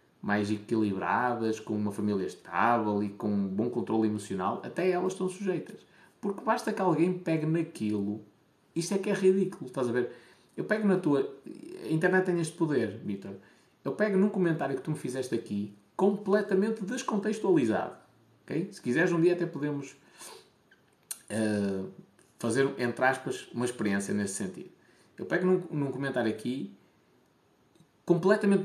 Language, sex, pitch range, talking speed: Portuguese, male, 120-185 Hz, 145 wpm